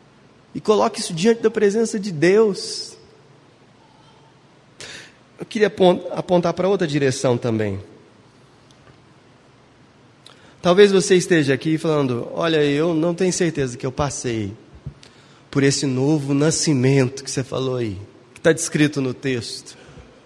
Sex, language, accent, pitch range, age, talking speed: male, Portuguese, Brazilian, 130-185 Hz, 20-39, 120 wpm